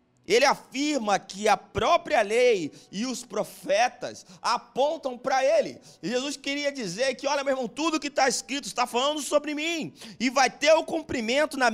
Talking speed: 170 wpm